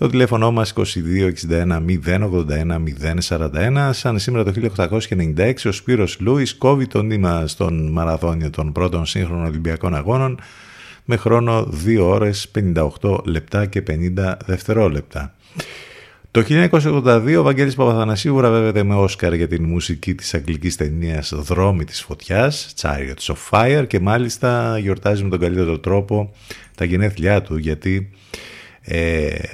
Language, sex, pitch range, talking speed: Greek, male, 85-110 Hz, 125 wpm